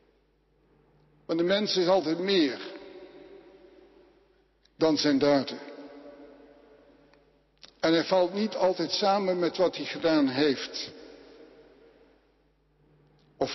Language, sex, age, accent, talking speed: Dutch, male, 60-79, Dutch, 95 wpm